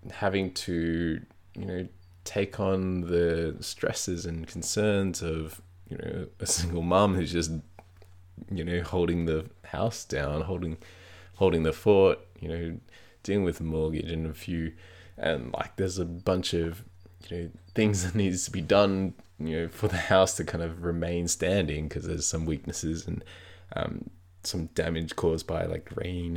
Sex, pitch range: male, 85-95 Hz